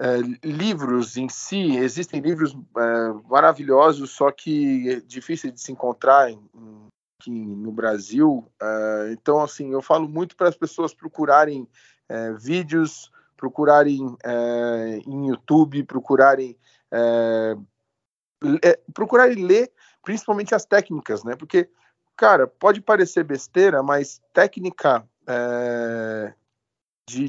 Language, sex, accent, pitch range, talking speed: Portuguese, male, Brazilian, 125-165 Hz, 95 wpm